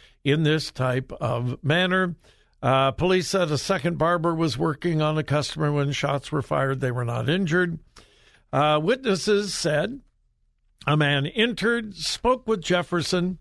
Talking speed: 150 wpm